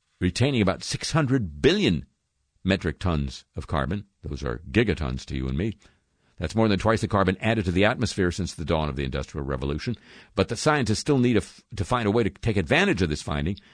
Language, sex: English, male